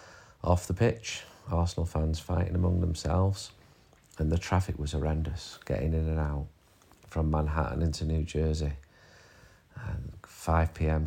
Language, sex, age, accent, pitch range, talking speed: English, male, 40-59, British, 80-90 Hz, 125 wpm